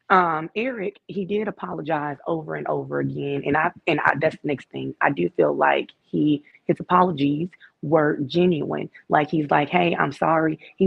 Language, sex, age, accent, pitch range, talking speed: English, female, 20-39, American, 140-170 Hz, 180 wpm